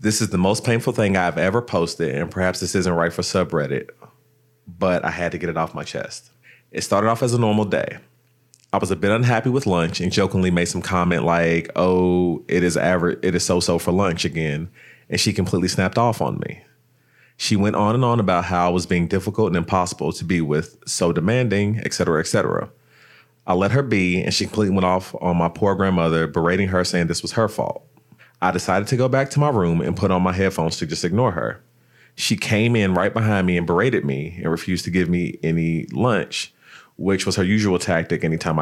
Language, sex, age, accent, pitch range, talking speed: English, male, 30-49, American, 85-105 Hz, 220 wpm